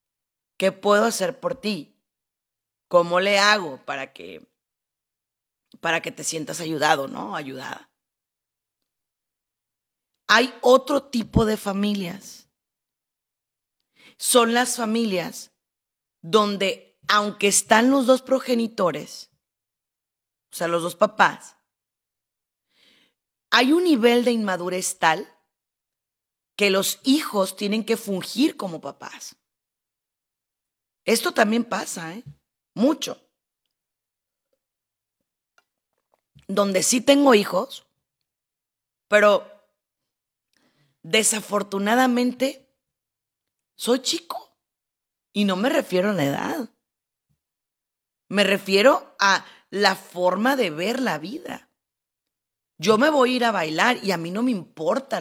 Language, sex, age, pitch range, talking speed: Spanish, female, 40-59, 170-235 Hz, 100 wpm